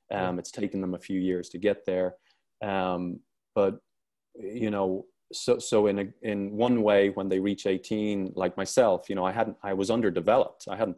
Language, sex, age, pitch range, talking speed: English, male, 20-39, 95-105 Hz, 195 wpm